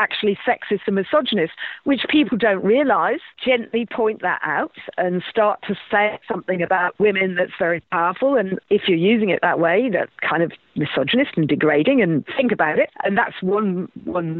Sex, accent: female, British